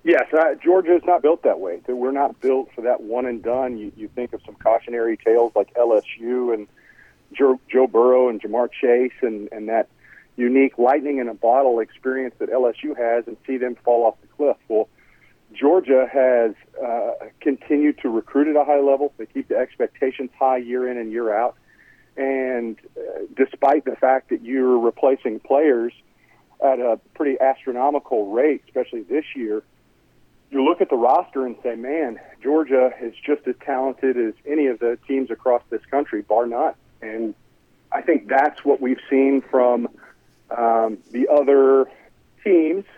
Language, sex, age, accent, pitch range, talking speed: English, male, 40-59, American, 120-140 Hz, 165 wpm